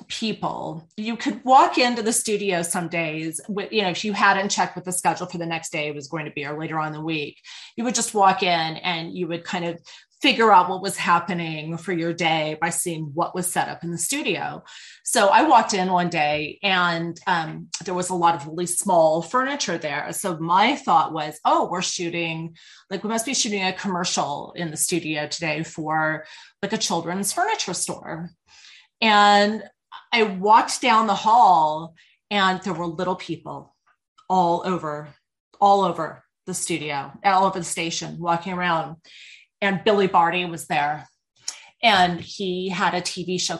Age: 30-49